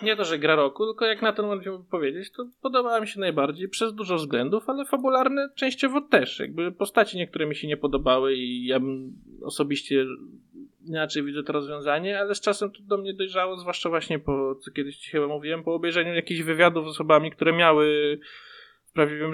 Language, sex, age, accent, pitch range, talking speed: Polish, male, 20-39, native, 140-185 Hz, 190 wpm